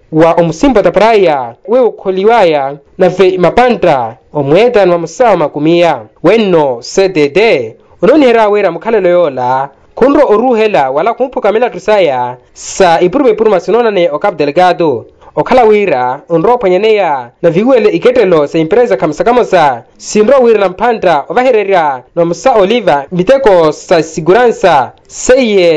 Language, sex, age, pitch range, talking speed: Portuguese, male, 20-39, 165-240 Hz, 140 wpm